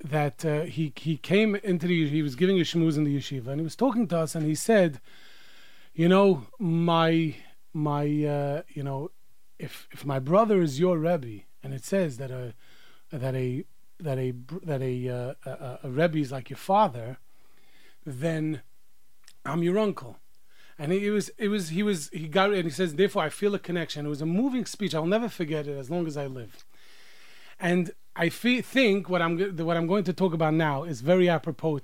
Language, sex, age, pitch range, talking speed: English, male, 30-49, 145-190 Hz, 205 wpm